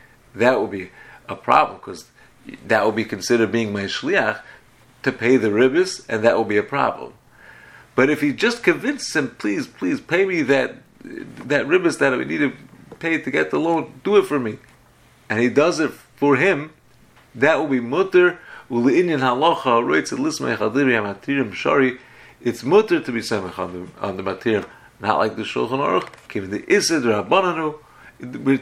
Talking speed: 160 wpm